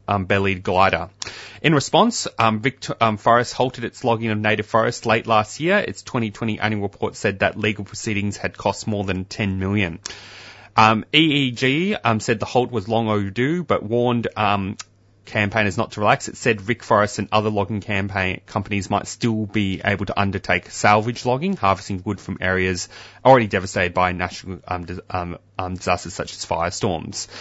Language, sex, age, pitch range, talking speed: English, male, 20-39, 95-115 Hz, 170 wpm